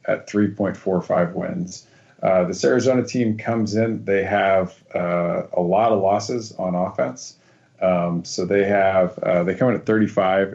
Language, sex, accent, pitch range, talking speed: English, male, American, 95-110 Hz, 160 wpm